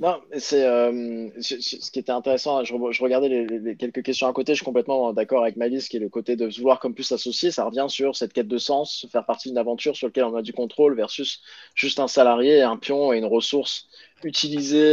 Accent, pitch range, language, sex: French, 120-145 Hz, French, male